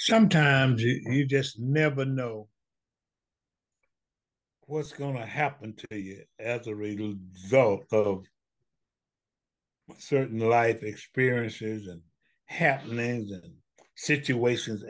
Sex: male